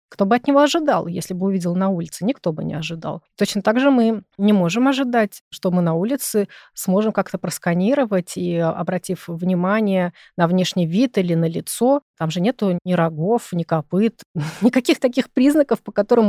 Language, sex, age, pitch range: Russian, female, 30-49, 180-230 Hz